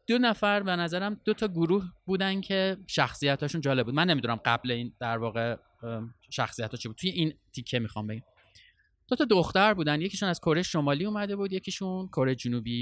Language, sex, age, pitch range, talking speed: Persian, male, 20-39, 120-190 Hz, 185 wpm